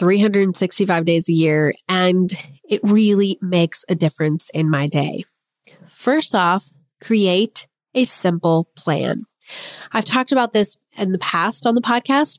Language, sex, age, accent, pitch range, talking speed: English, female, 30-49, American, 175-220 Hz, 140 wpm